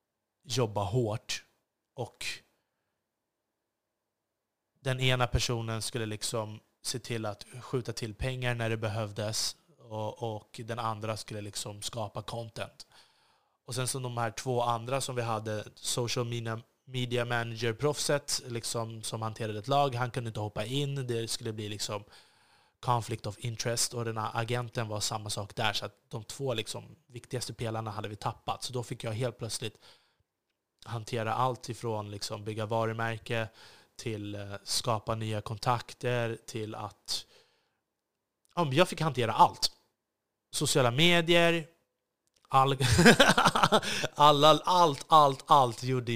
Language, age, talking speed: Swedish, 20-39, 140 wpm